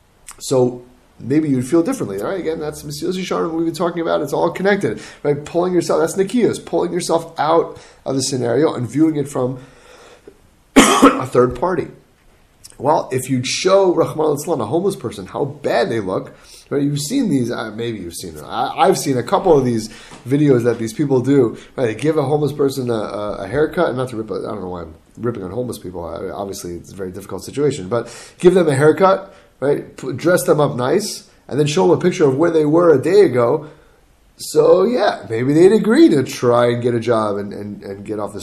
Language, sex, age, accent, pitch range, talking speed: English, male, 30-49, American, 115-165 Hz, 220 wpm